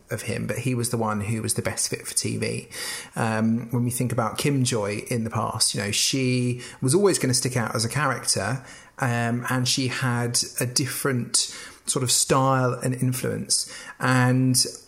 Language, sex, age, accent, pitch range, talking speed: English, male, 30-49, British, 115-130 Hz, 195 wpm